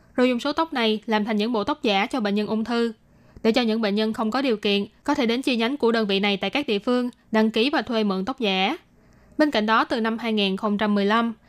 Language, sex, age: Vietnamese, female, 10-29